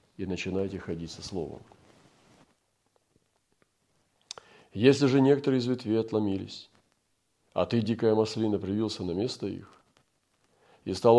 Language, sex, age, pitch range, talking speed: Russian, male, 40-59, 90-115 Hz, 115 wpm